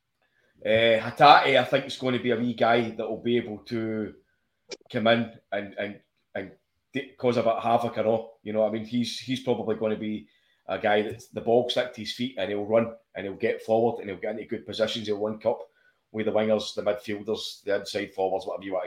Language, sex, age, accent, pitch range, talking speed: English, male, 20-39, British, 110-140 Hz, 230 wpm